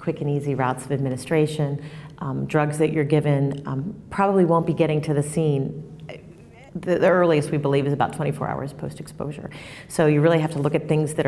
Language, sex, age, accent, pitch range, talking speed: English, female, 40-59, American, 140-160 Hz, 210 wpm